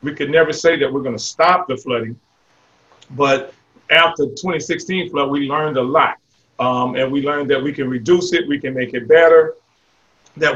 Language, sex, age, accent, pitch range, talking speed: English, male, 40-59, American, 140-170 Hz, 195 wpm